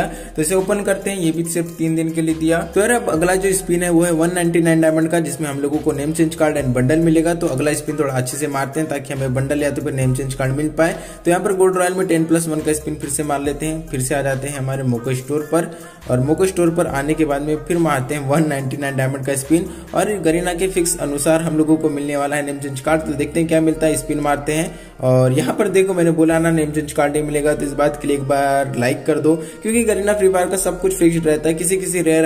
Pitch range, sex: 140-170 Hz, male